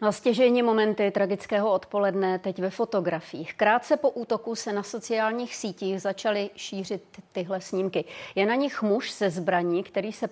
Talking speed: 155 wpm